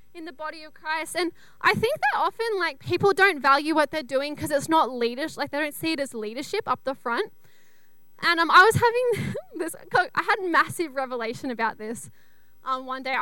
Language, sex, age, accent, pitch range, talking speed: English, female, 10-29, Australian, 250-340 Hz, 210 wpm